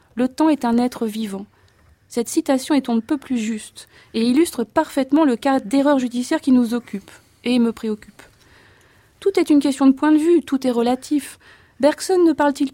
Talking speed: 195 wpm